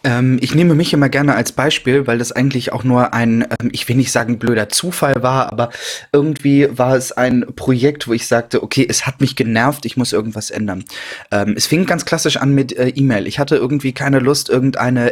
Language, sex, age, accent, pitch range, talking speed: German, male, 20-39, German, 115-135 Hz, 205 wpm